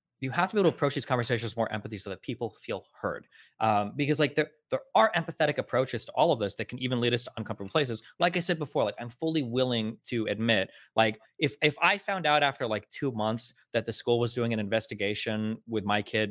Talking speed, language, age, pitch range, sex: 245 wpm, English, 20-39, 105-135 Hz, male